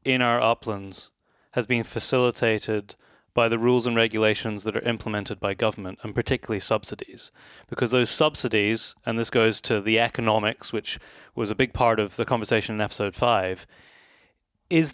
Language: English